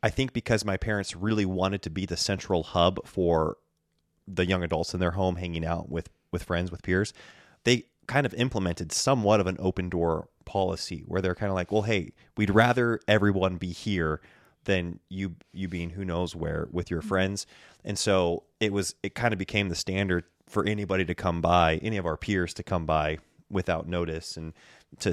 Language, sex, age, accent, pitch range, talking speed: English, male, 30-49, American, 85-105 Hz, 200 wpm